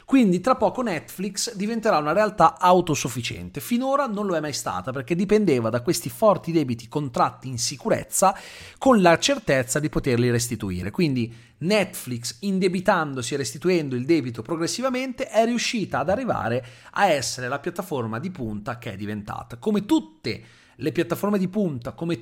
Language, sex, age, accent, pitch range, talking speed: Italian, male, 40-59, native, 135-210 Hz, 155 wpm